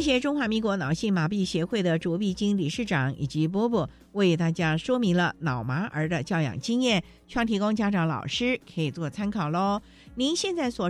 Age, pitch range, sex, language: 50-69, 170-240 Hz, female, Chinese